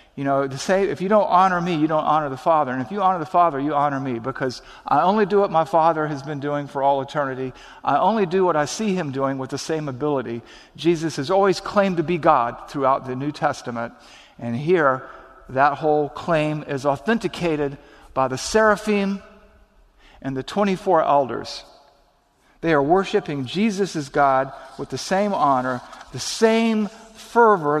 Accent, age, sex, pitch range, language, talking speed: American, 50-69, male, 130-180 Hz, English, 185 wpm